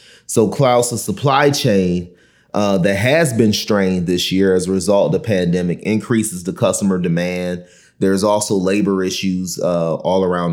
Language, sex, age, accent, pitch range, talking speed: English, male, 30-49, American, 85-100 Hz, 165 wpm